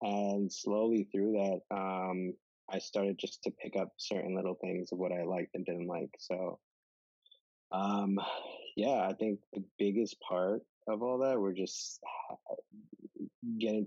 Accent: American